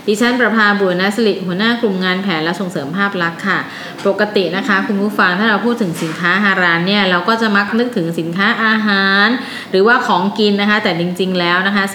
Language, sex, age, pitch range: Thai, female, 20-39, 175-220 Hz